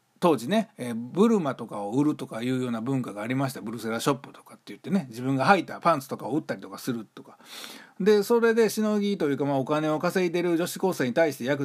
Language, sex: Japanese, male